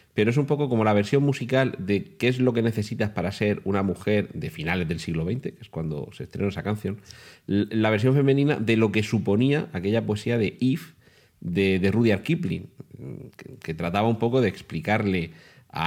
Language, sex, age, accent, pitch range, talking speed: Spanish, male, 40-59, Spanish, 95-120 Hz, 200 wpm